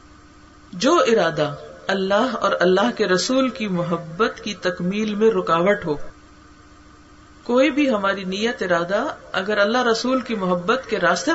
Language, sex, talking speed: Urdu, female, 135 wpm